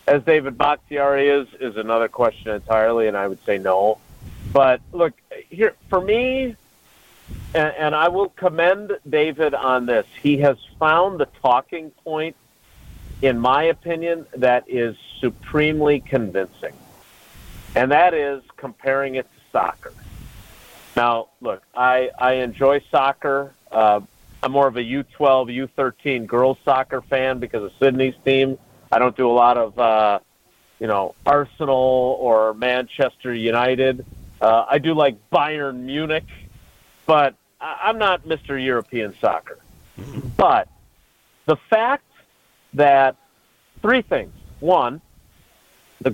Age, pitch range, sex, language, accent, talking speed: 50-69, 120-155 Hz, male, English, American, 130 wpm